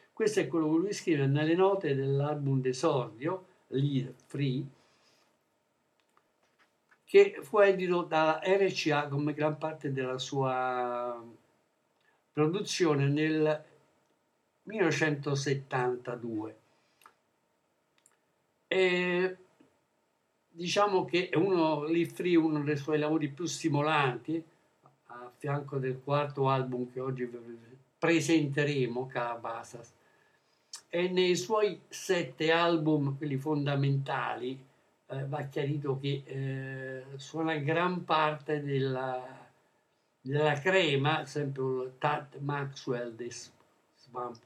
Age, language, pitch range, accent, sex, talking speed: 60-79, Italian, 135-160 Hz, native, male, 95 wpm